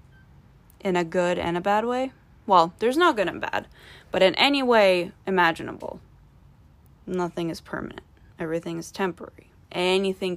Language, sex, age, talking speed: English, female, 20-39, 145 wpm